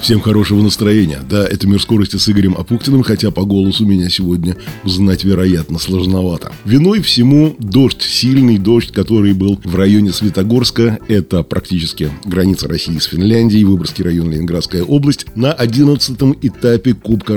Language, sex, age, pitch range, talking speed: Russian, male, 20-39, 100-130 Hz, 145 wpm